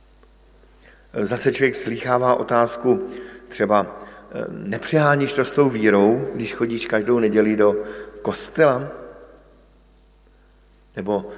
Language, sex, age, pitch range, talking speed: Slovak, male, 50-69, 115-140 Hz, 90 wpm